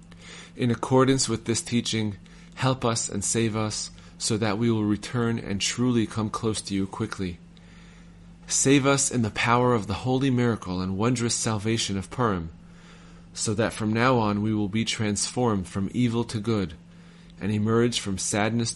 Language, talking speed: English, 170 wpm